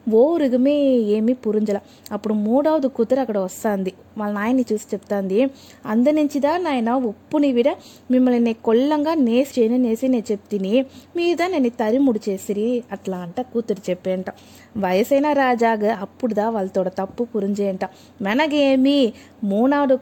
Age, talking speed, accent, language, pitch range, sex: 20-39, 115 wpm, native, Telugu, 220-265 Hz, female